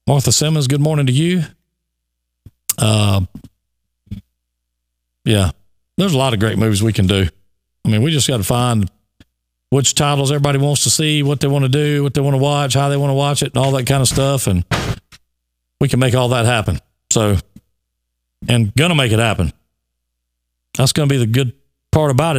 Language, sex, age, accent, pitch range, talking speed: English, male, 40-59, American, 90-150 Hz, 200 wpm